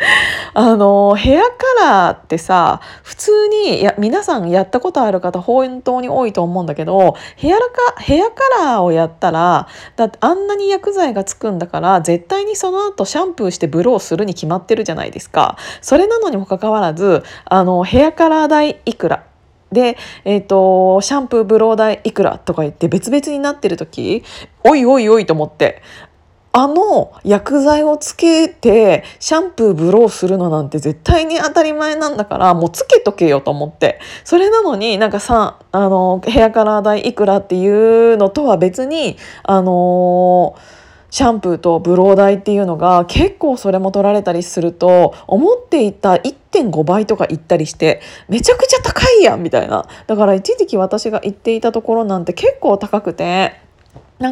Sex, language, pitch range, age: female, Japanese, 185-300 Hz, 20-39